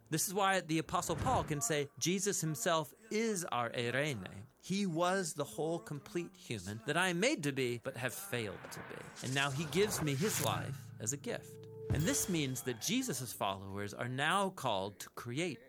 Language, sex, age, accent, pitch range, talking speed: English, male, 30-49, American, 120-165 Hz, 195 wpm